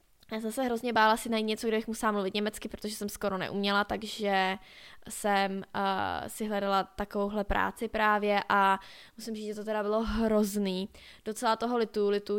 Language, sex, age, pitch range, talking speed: Czech, female, 20-39, 195-220 Hz, 180 wpm